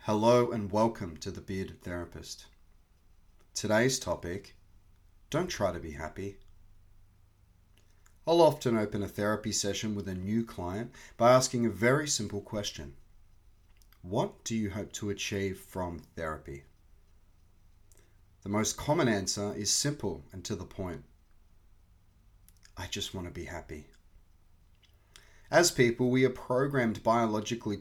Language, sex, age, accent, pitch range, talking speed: English, male, 30-49, Australian, 85-110 Hz, 130 wpm